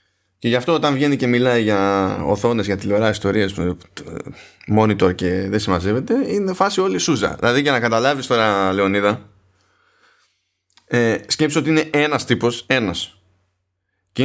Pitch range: 95-135 Hz